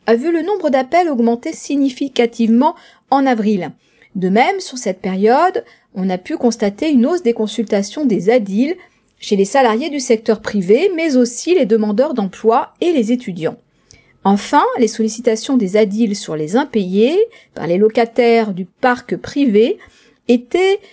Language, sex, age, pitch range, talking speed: French, female, 40-59, 210-275 Hz, 150 wpm